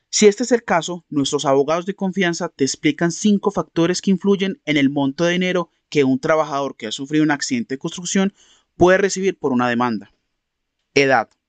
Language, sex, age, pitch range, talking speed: Spanish, male, 30-49, 135-175 Hz, 190 wpm